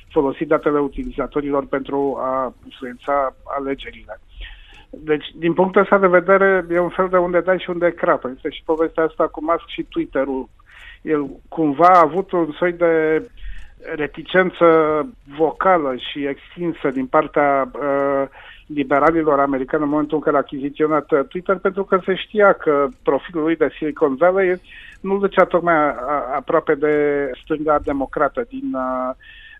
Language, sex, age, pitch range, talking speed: Romanian, male, 50-69, 145-175 Hz, 150 wpm